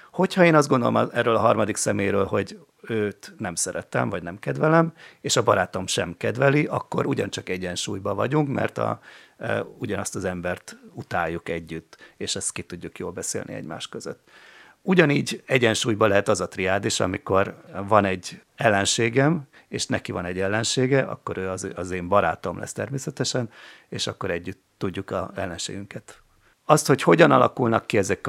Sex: male